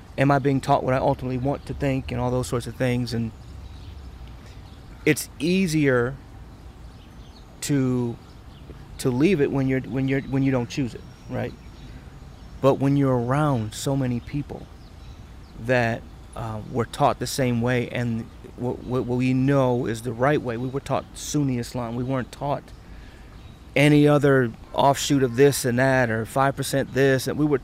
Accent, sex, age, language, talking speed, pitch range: American, male, 30-49, English, 165 wpm, 120-140 Hz